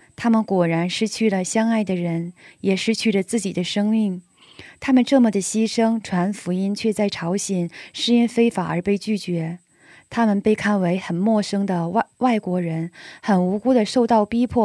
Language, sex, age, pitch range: Korean, female, 20-39, 180-225 Hz